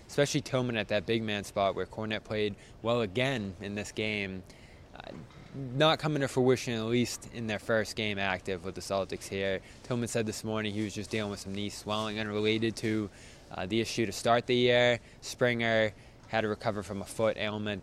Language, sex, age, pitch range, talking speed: English, male, 20-39, 95-115 Hz, 200 wpm